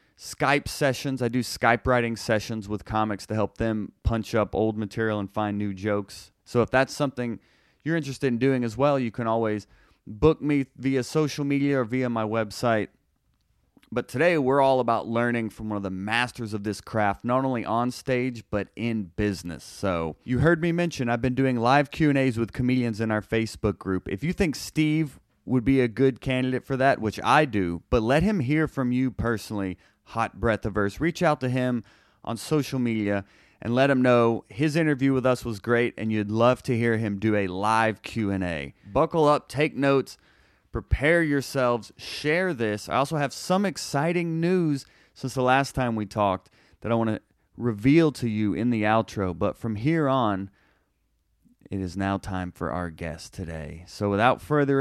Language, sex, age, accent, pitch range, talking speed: English, male, 30-49, American, 105-135 Hz, 195 wpm